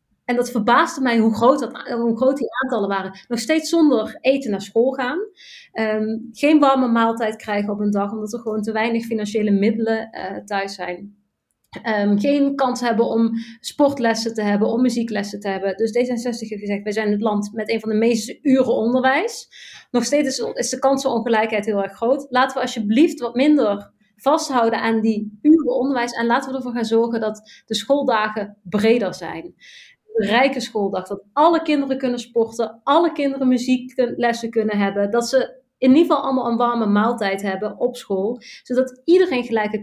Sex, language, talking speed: female, Dutch, 175 wpm